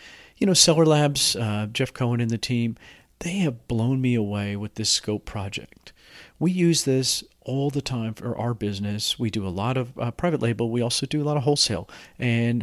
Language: English